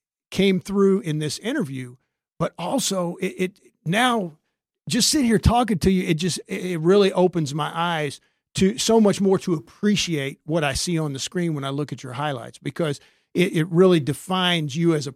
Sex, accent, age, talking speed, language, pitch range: male, American, 50-69, 195 wpm, English, 155-190 Hz